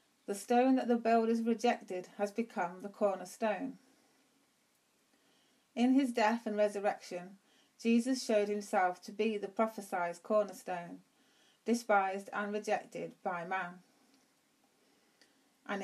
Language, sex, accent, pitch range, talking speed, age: English, female, British, 195-240 Hz, 110 wpm, 30-49